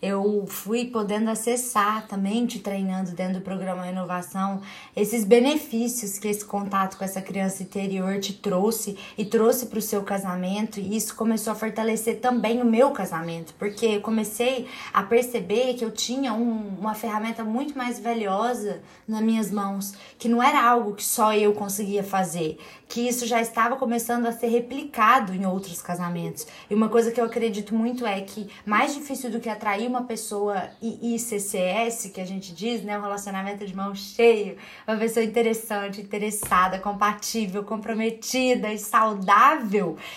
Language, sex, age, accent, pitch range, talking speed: Portuguese, female, 20-39, Brazilian, 195-235 Hz, 165 wpm